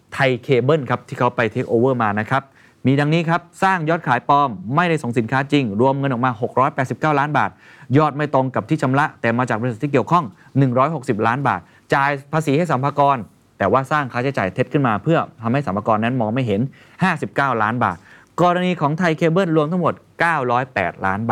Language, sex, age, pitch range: Thai, male, 20-39, 120-155 Hz